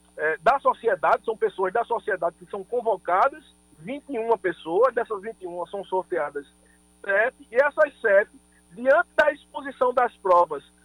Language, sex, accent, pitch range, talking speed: Portuguese, male, Brazilian, 210-300 Hz, 140 wpm